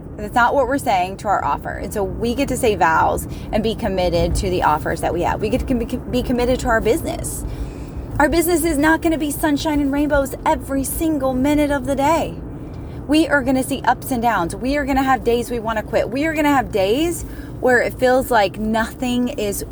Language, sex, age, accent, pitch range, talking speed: English, female, 20-39, American, 175-270 Hz, 235 wpm